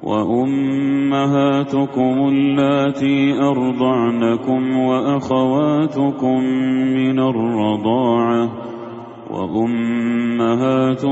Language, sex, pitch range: Kannada, male, 120-135 Hz